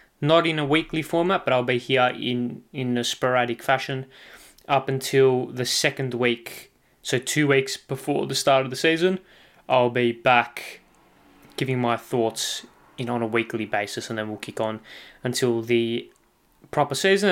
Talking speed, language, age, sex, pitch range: 165 wpm, English, 20-39, male, 120-140 Hz